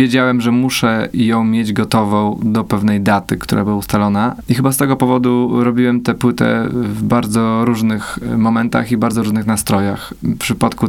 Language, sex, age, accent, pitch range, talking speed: Polish, male, 20-39, native, 105-120 Hz, 165 wpm